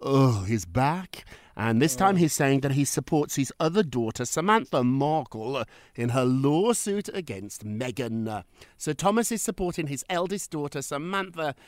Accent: British